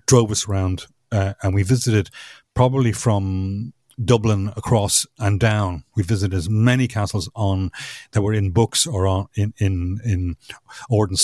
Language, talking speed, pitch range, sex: English, 155 wpm, 95-115 Hz, male